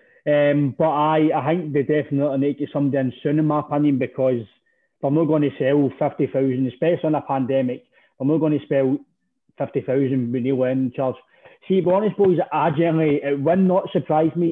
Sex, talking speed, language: male, 200 wpm, English